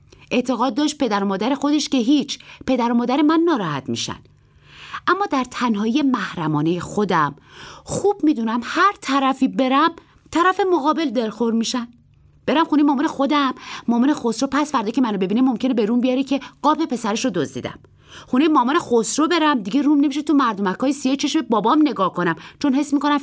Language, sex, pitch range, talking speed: Persian, female, 225-315 Hz, 170 wpm